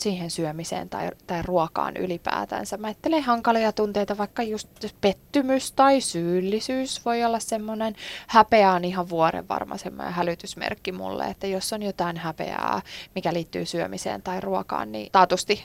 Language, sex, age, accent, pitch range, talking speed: Finnish, female, 20-39, native, 175-220 Hz, 135 wpm